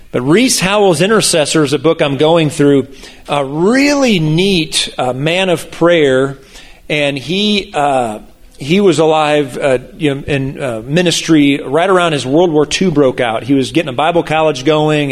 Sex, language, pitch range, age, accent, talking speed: male, English, 140-165 Hz, 40-59, American, 175 wpm